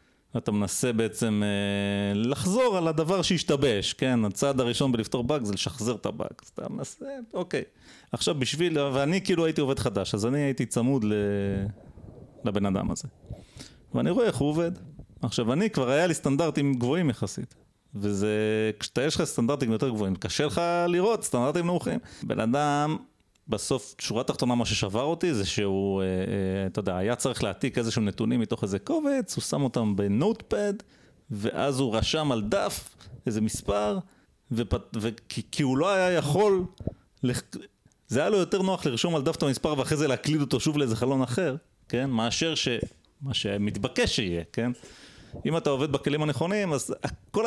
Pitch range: 105-155 Hz